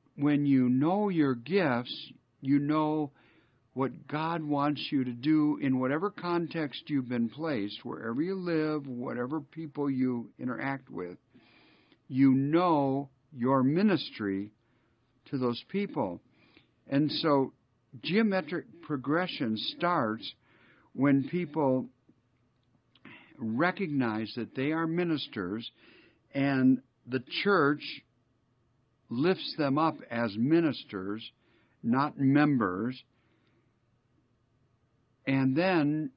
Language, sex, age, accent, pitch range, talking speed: English, male, 60-79, American, 120-150 Hz, 95 wpm